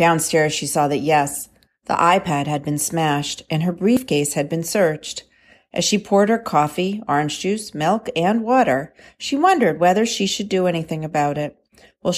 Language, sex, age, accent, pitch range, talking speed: English, female, 40-59, American, 165-220 Hz, 175 wpm